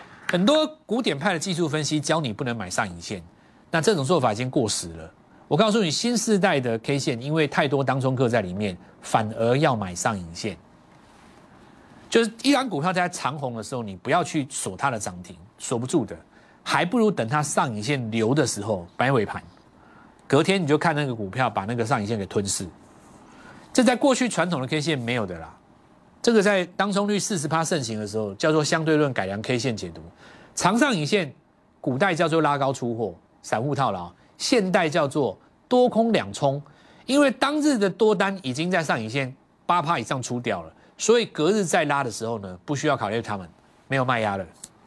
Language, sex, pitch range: Chinese, male, 110-180 Hz